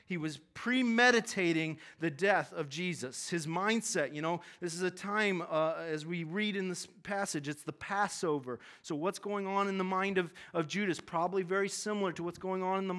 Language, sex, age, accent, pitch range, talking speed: English, male, 30-49, American, 160-205 Hz, 205 wpm